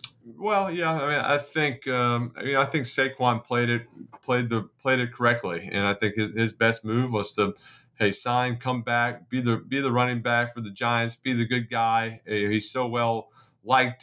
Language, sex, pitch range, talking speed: English, male, 110-120 Hz, 215 wpm